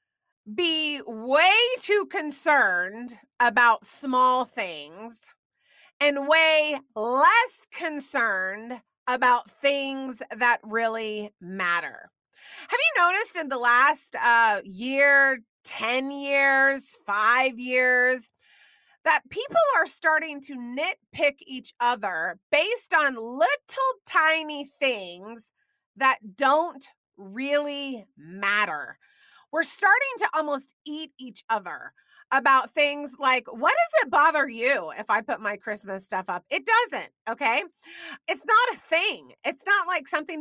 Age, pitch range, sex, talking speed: 30-49, 235-330 Hz, female, 115 wpm